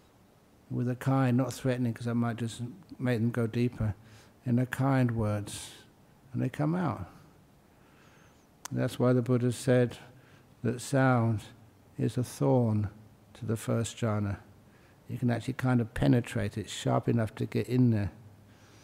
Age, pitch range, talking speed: 60-79, 110-130 Hz, 155 wpm